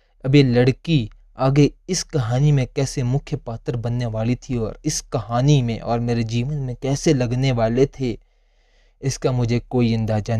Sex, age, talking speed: male, 20-39, 165 wpm